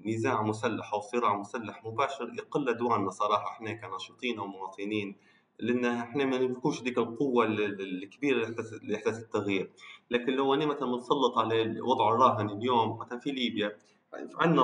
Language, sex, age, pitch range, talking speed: Arabic, male, 20-39, 105-125 Hz, 140 wpm